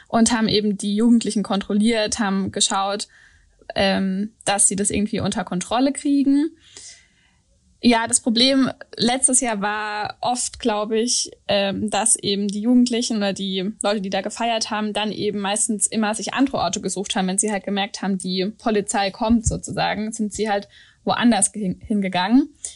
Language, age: German, 10-29